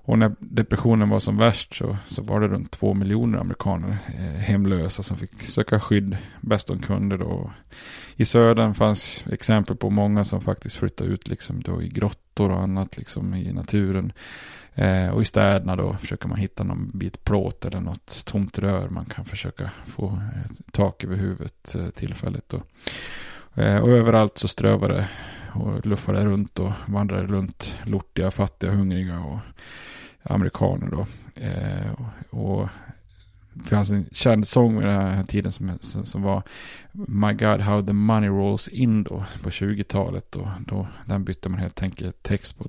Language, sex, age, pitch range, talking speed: Swedish, male, 20-39, 95-110 Hz, 165 wpm